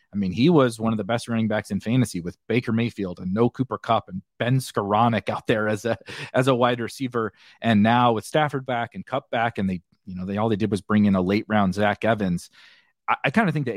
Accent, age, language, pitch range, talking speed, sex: American, 30-49, English, 110-140 Hz, 260 wpm, male